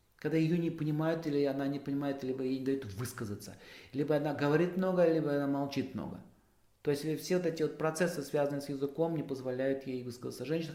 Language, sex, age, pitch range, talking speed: Russian, male, 40-59, 125-170 Hz, 200 wpm